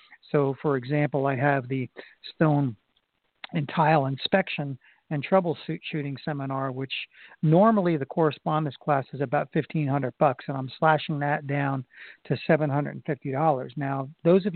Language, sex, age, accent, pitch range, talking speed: English, male, 50-69, American, 140-155 Hz, 155 wpm